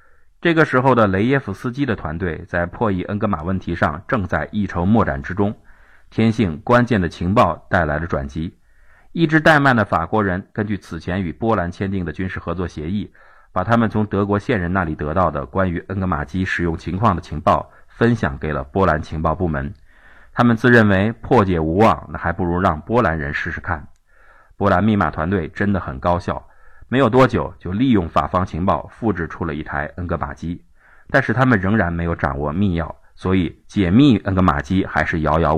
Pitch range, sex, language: 80-105 Hz, male, Chinese